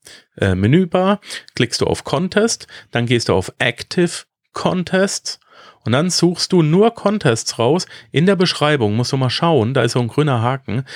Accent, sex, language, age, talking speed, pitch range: German, male, German, 40-59, 170 wpm, 105-145 Hz